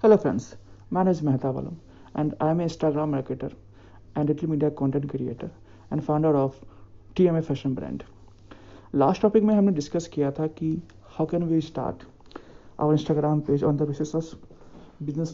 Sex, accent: male, native